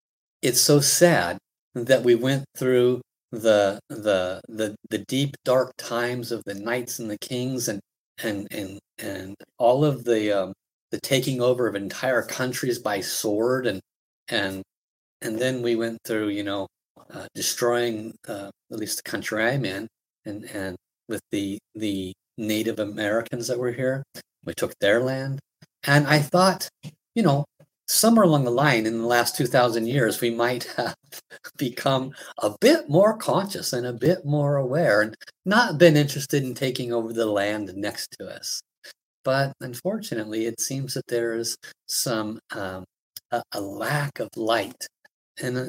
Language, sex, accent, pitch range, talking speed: English, male, American, 110-140 Hz, 160 wpm